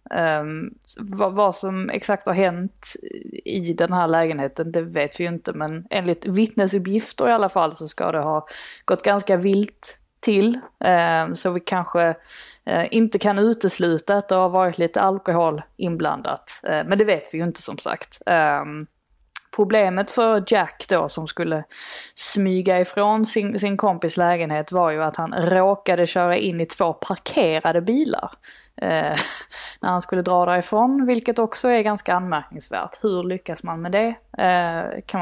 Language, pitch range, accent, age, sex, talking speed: Swedish, 165-205 Hz, native, 20-39, female, 160 wpm